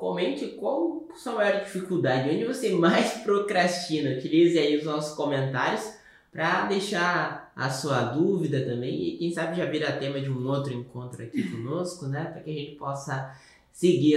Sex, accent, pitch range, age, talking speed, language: male, Brazilian, 130-175 Hz, 20-39, 170 wpm, Portuguese